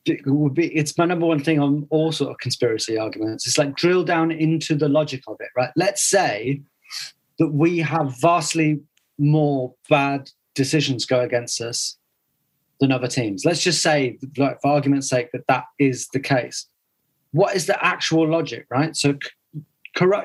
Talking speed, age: 175 wpm, 30-49